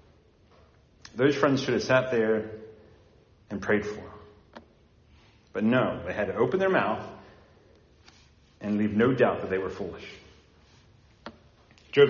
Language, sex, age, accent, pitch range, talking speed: English, male, 40-59, American, 100-140 Hz, 135 wpm